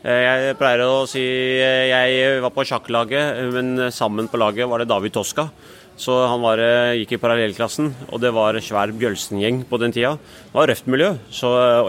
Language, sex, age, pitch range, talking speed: English, male, 30-49, 105-125 Hz, 170 wpm